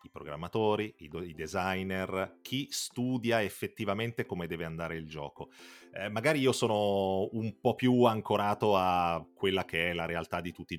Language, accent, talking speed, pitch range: Italian, native, 160 wpm, 90-130 Hz